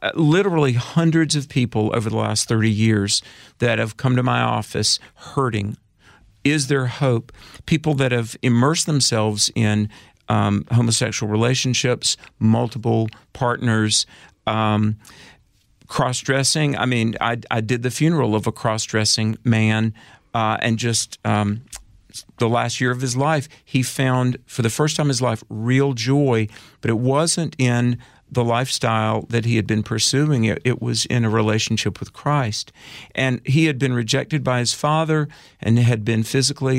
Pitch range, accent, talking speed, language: 110-135 Hz, American, 155 wpm, English